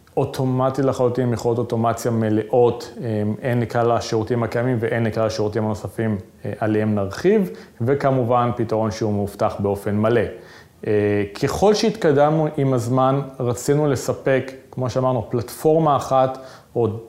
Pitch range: 110-130 Hz